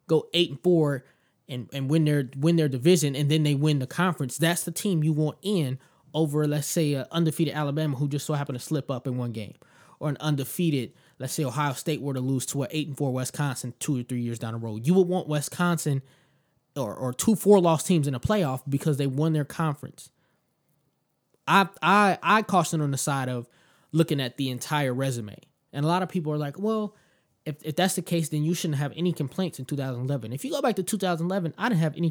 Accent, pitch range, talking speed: American, 135-170 Hz, 230 wpm